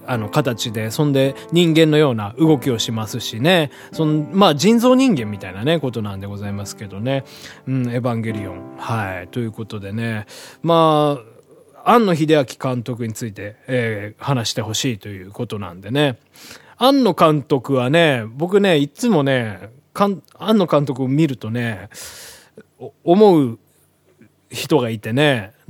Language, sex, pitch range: Japanese, male, 110-160 Hz